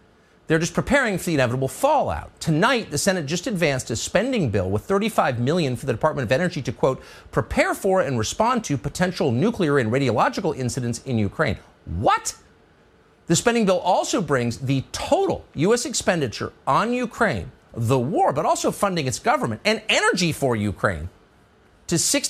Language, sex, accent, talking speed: English, male, American, 165 wpm